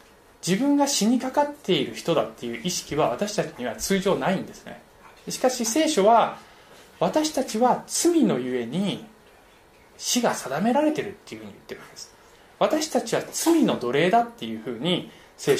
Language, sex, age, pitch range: Japanese, male, 20-39, 180-280 Hz